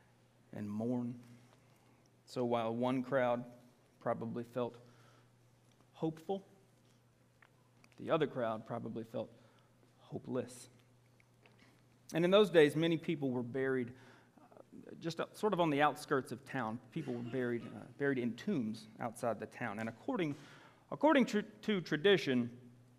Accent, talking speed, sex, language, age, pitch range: American, 125 wpm, male, English, 40-59, 120-155 Hz